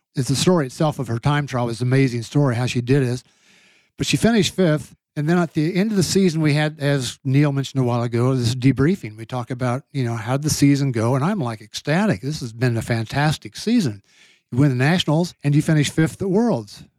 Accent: American